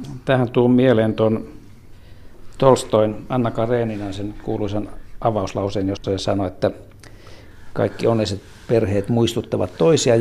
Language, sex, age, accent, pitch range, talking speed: Finnish, male, 60-79, native, 100-120 Hz, 105 wpm